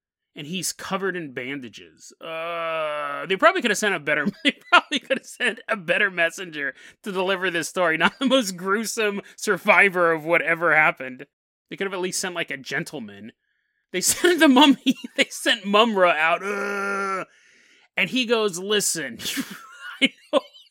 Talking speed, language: 165 wpm, English